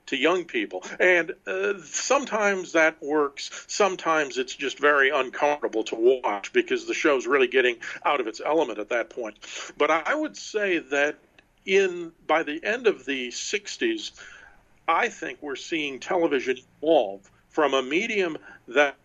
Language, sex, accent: English, male, American